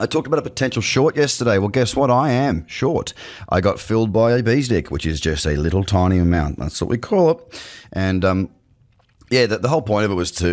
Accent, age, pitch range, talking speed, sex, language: Australian, 30-49, 85-110 Hz, 245 wpm, male, English